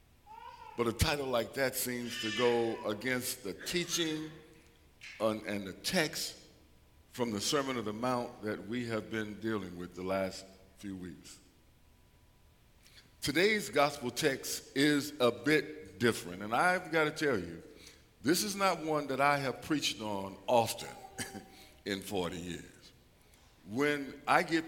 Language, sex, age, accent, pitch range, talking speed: English, male, 50-69, American, 115-195 Hz, 145 wpm